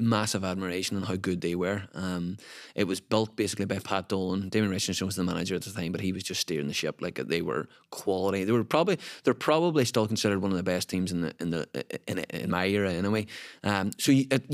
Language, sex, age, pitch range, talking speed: Russian, male, 20-39, 90-110 Hz, 245 wpm